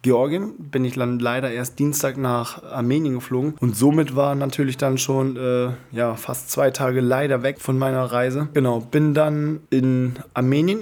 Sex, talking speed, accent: male, 170 wpm, German